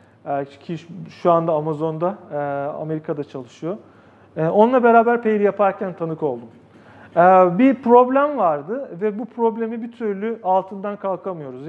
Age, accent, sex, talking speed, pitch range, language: 40-59, native, male, 115 wpm, 155-220 Hz, Turkish